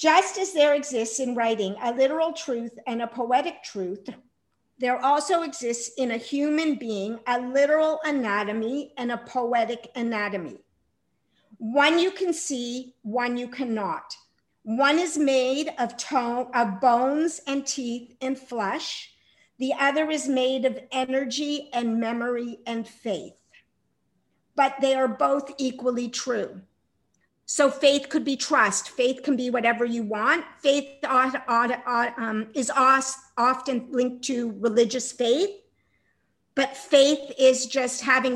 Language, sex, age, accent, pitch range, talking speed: English, female, 50-69, American, 235-275 Hz, 130 wpm